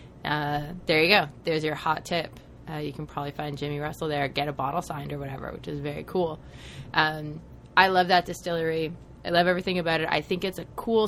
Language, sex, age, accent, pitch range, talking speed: English, female, 20-39, American, 150-175 Hz, 220 wpm